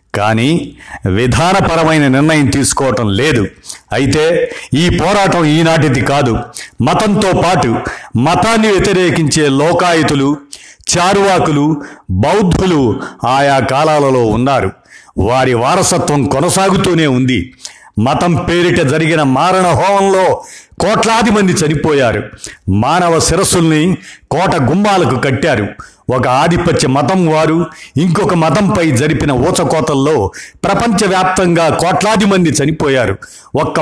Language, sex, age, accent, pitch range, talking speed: Telugu, male, 50-69, native, 135-180 Hz, 90 wpm